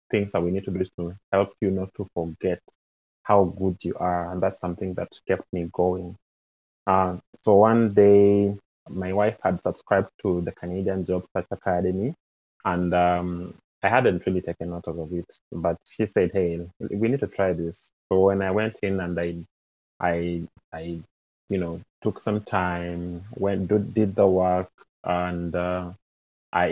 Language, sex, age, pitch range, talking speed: English, male, 20-39, 85-95 Hz, 175 wpm